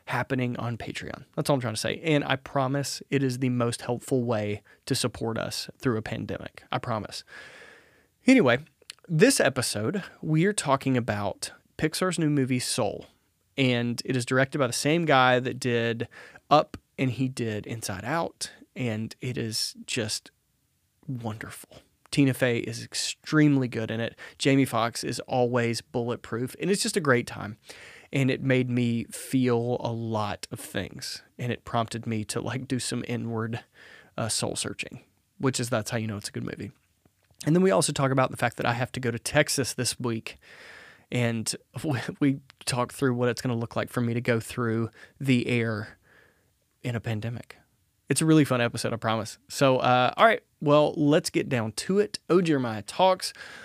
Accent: American